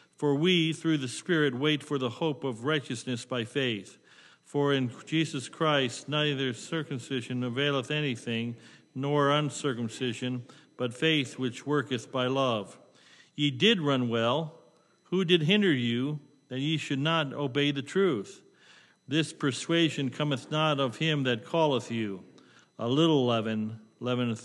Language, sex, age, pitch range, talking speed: English, male, 50-69, 125-150 Hz, 140 wpm